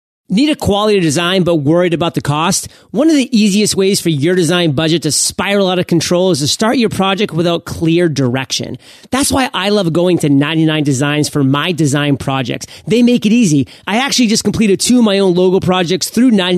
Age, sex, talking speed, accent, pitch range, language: 30-49, male, 210 wpm, American, 155-200 Hz, English